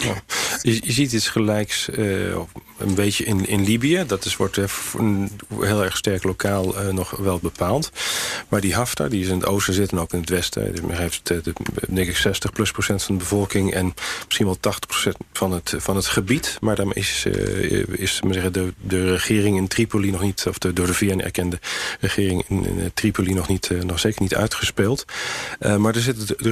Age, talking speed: 40-59, 215 wpm